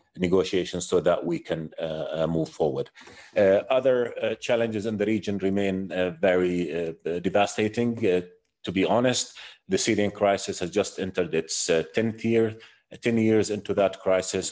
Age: 30-49